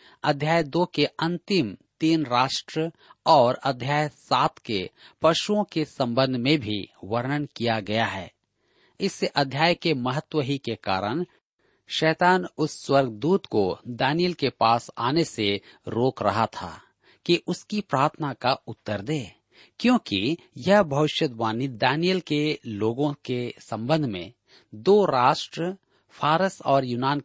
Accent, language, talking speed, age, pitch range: native, Hindi, 130 wpm, 50-69, 115-160 Hz